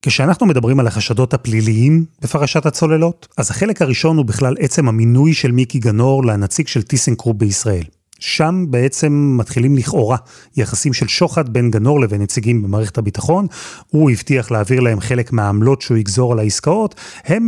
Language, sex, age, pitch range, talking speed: Hebrew, male, 30-49, 115-155 Hz, 155 wpm